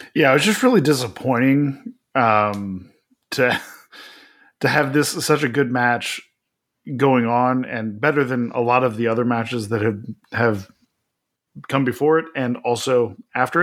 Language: English